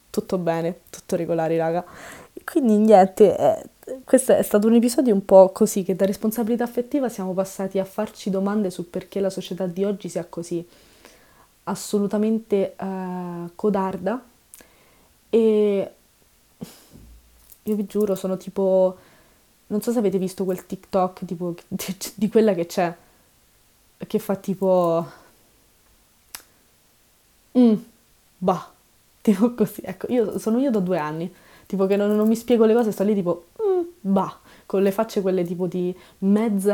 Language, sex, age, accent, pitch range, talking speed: Italian, female, 20-39, native, 175-210 Hz, 145 wpm